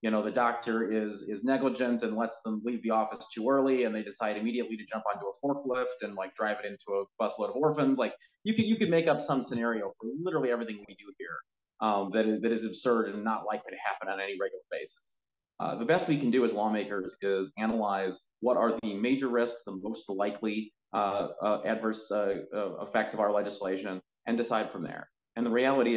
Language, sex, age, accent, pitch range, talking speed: English, male, 30-49, American, 105-120 Hz, 225 wpm